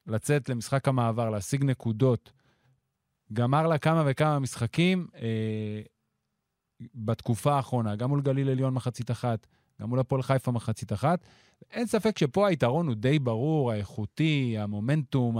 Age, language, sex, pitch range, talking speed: 30-49, Hebrew, male, 115-145 Hz, 135 wpm